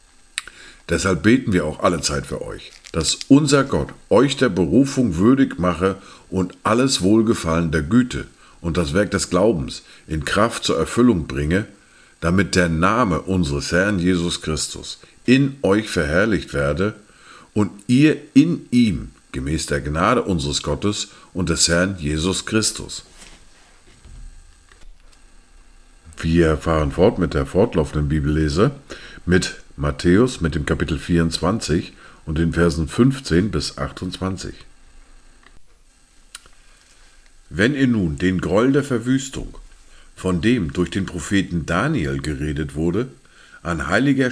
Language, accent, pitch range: German, German, 80-110 Hz